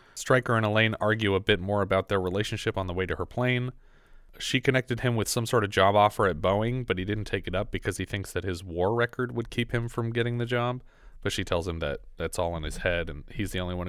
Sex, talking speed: male, 270 wpm